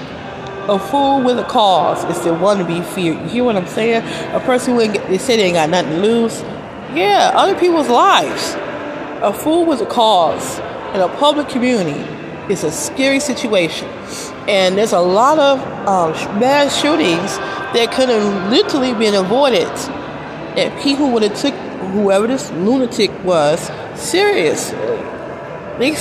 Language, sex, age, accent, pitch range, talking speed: English, female, 30-49, American, 195-270 Hz, 165 wpm